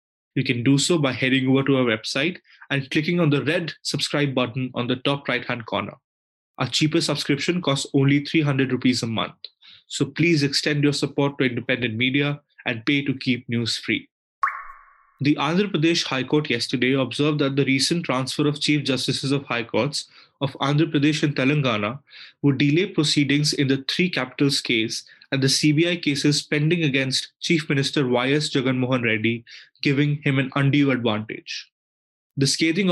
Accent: Indian